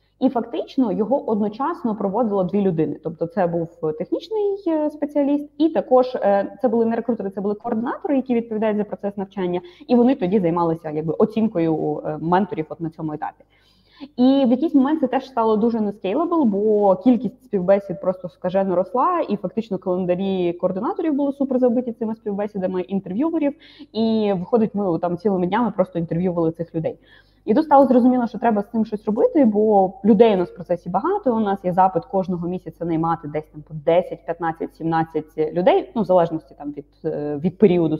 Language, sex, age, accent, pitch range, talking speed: Ukrainian, female, 20-39, native, 175-235 Hz, 170 wpm